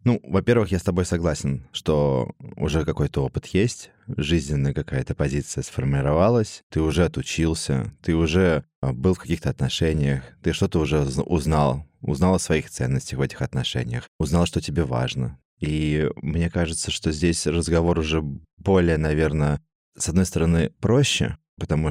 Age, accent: 20-39, native